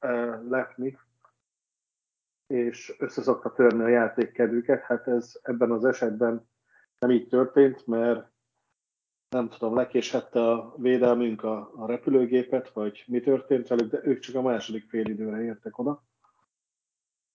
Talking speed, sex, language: 125 wpm, male, Hungarian